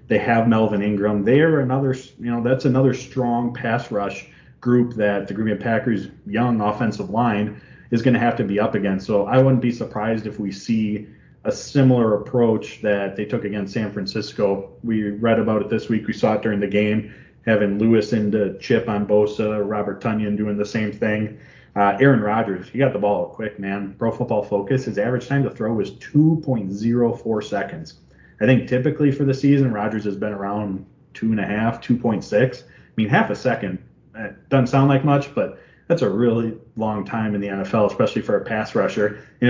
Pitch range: 105-130 Hz